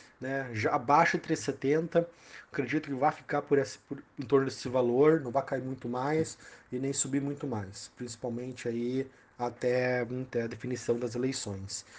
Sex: male